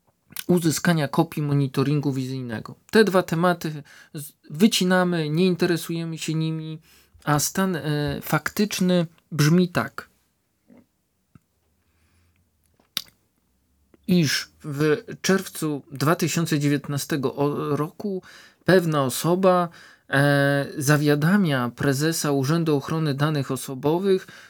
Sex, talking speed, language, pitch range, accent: male, 75 wpm, Polish, 135-170 Hz, native